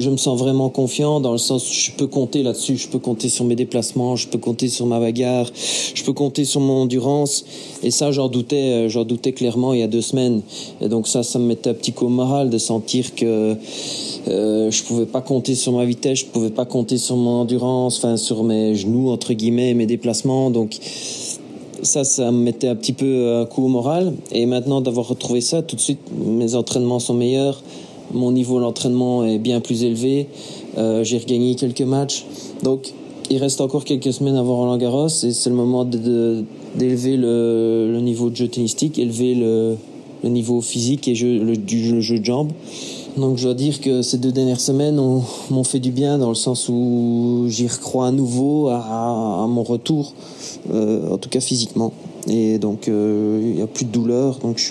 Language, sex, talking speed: French, male, 215 wpm